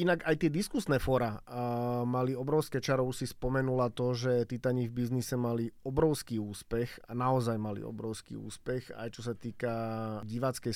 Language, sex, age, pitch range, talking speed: Slovak, male, 30-49, 125-150 Hz, 150 wpm